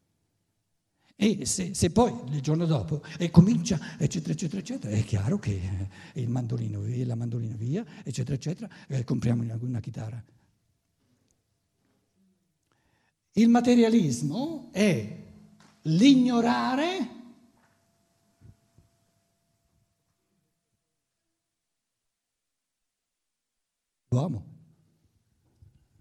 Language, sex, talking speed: Italian, male, 85 wpm